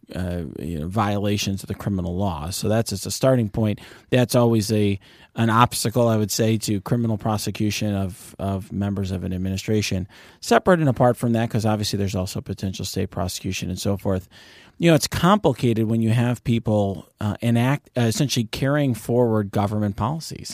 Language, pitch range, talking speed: English, 100-120 Hz, 180 wpm